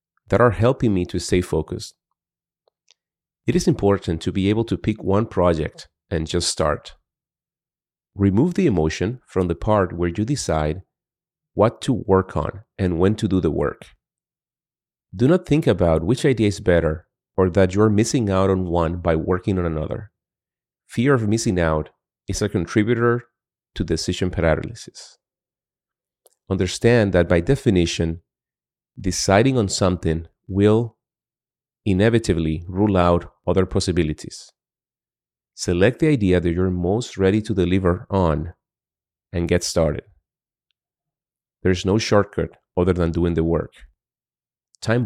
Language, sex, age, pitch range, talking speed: English, male, 30-49, 85-110 Hz, 135 wpm